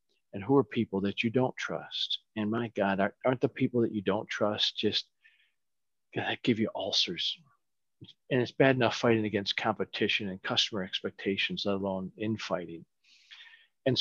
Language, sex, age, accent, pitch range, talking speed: English, male, 40-59, American, 105-135 Hz, 165 wpm